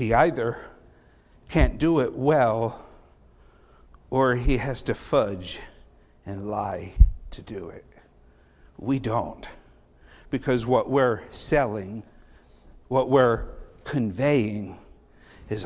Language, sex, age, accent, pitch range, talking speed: English, male, 60-79, American, 105-140 Hz, 100 wpm